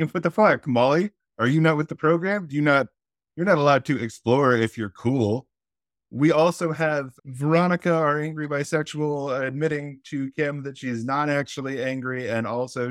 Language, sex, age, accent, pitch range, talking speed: English, male, 30-49, American, 125-160 Hz, 175 wpm